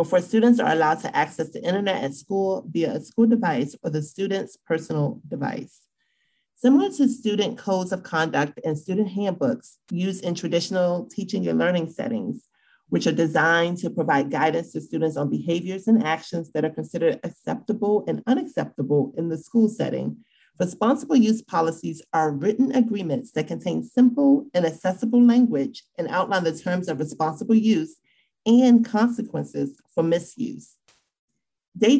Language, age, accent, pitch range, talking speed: English, 40-59, American, 160-230 Hz, 150 wpm